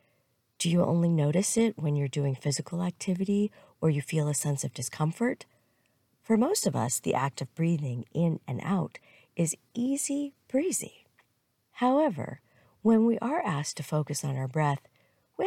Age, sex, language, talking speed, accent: 40-59, female, English, 165 wpm, American